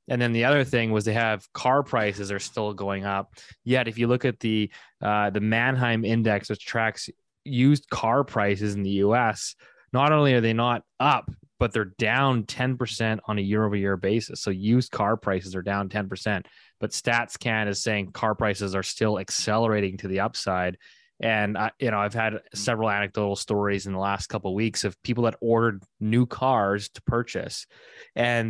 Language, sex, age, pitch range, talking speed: English, male, 20-39, 105-125 Hz, 185 wpm